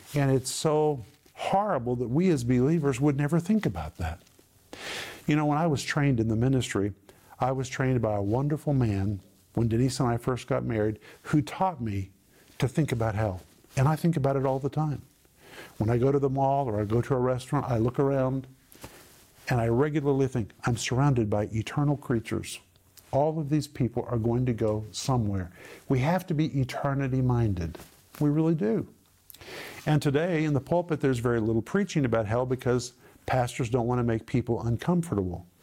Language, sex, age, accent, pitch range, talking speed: English, male, 50-69, American, 110-145 Hz, 185 wpm